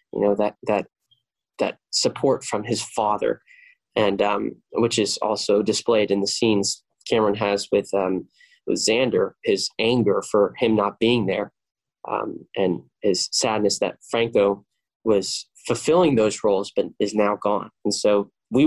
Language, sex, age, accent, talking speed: English, male, 10-29, American, 155 wpm